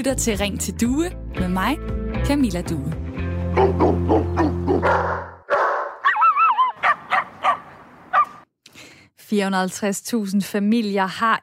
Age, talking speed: 20-39, 60 wpm